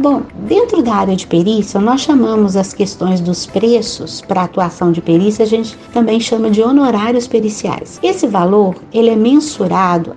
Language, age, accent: Portuguese, 50-69, Brazilian